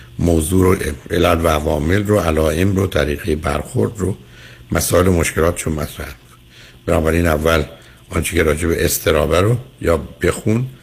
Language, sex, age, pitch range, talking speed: Persian, male, 60-79, 75-95 Hz, 135 wpm